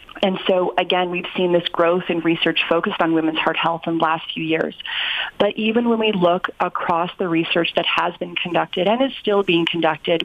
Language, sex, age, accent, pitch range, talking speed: English, female, 30-49, American, 170-205 Hz, 210 wpm